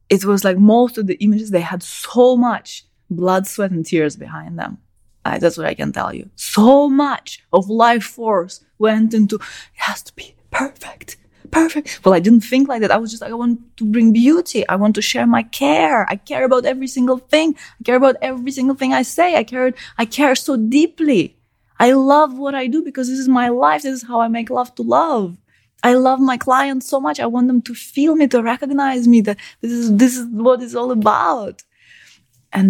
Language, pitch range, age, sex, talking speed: English, 190-265 Hz, 20-39, female, 220 wpm